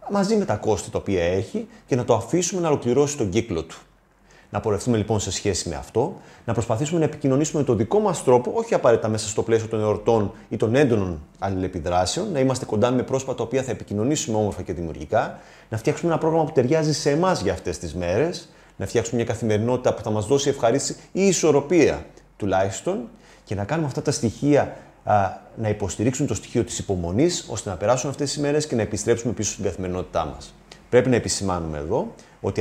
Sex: male